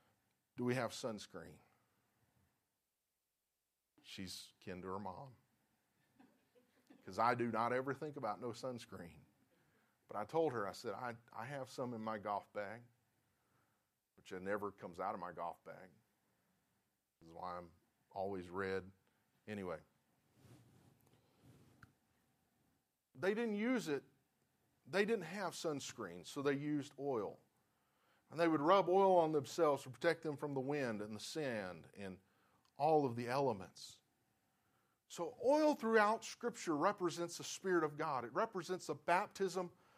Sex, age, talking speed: male, 40-59, 140 wpm